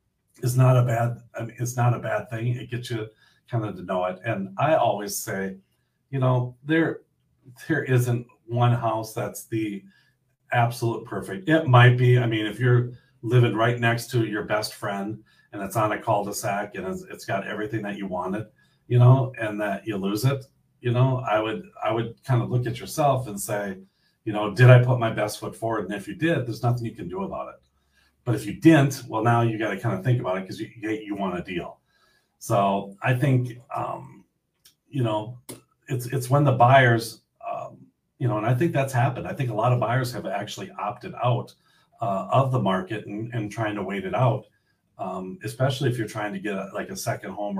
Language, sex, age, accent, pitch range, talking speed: English, male, 40-59, American, 105-130 Hz, 215 wpm